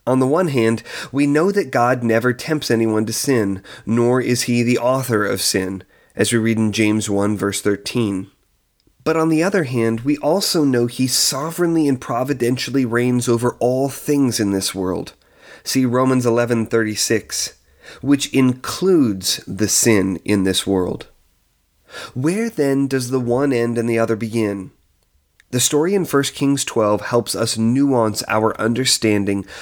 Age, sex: 30-49, male